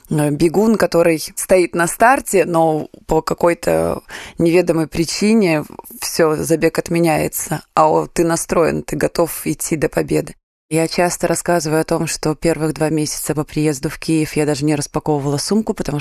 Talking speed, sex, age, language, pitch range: 150 wpm, female, 20-39, Russian, 145-170 Hz